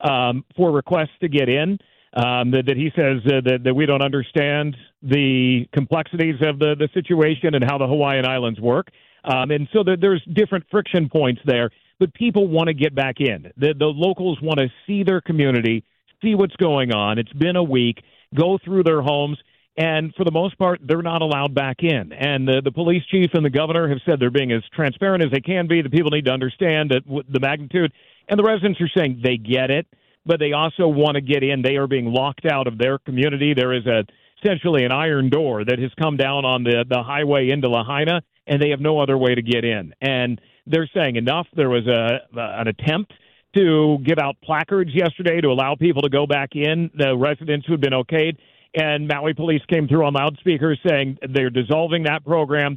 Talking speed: 215 wpm